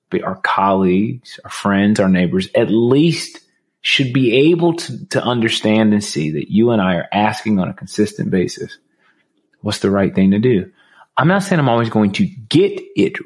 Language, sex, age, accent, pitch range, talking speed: English, male, 30-49, American, 100-140 Hz, 185 wpm